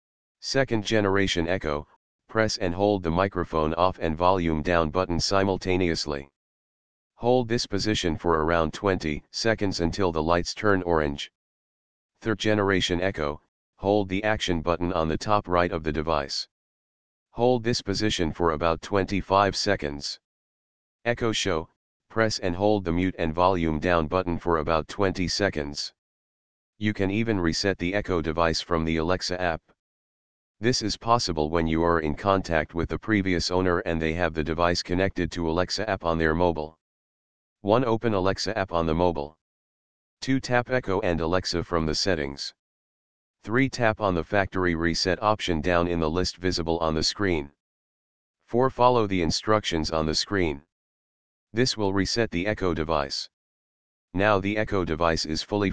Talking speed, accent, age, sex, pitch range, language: 155 wpm, American, 40-59, male, 80-100 Hz, English